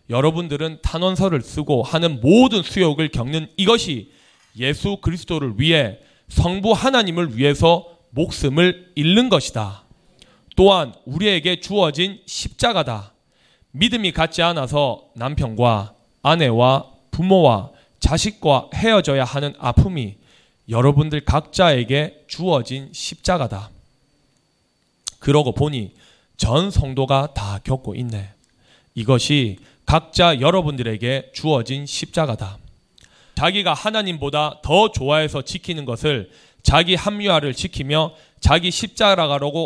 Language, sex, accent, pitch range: Korean, male, native, 130-175 Hz